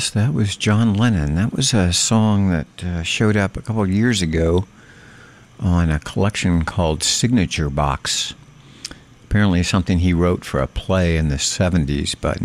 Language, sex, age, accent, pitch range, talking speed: English, male, 60-79, American, 80-105 Hz, 165 wpm